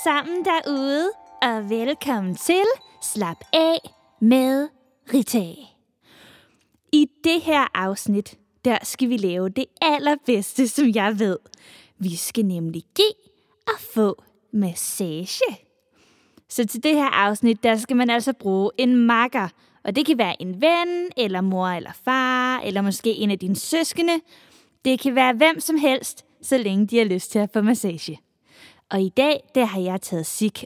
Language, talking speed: Danish, 155 wpm